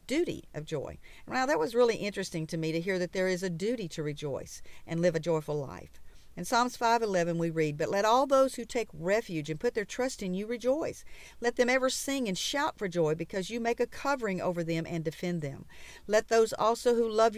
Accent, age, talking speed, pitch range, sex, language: American, 50-69, 230 wpm, 165-225 Hz, female, English